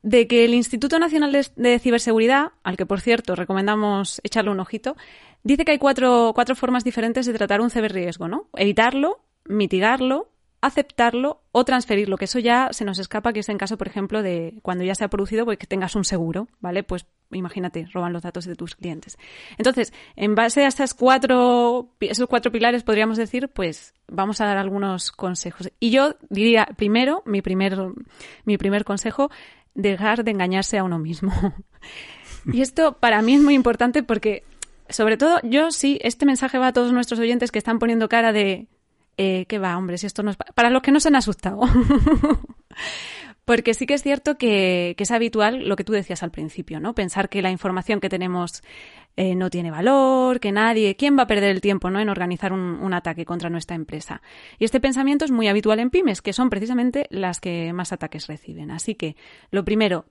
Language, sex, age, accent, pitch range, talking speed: Spanish, female, 20-39, Spanish, 190-245 Hz, 195 wpm